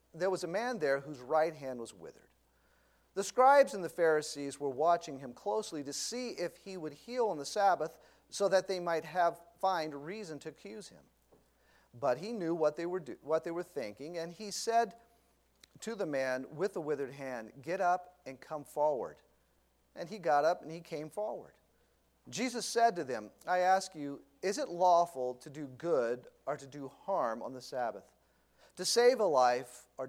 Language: English